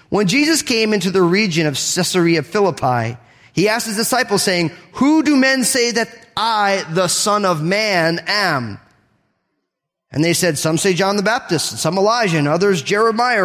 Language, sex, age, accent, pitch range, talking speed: English, male, 30-49, American, 150-205 Hz, 175 wpm